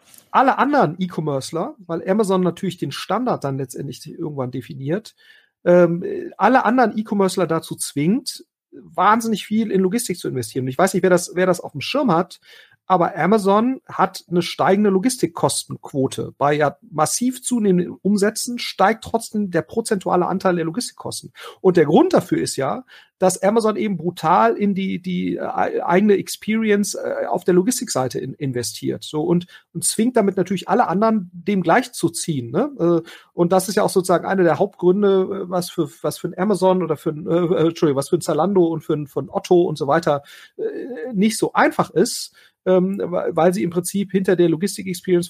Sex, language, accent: male, German, German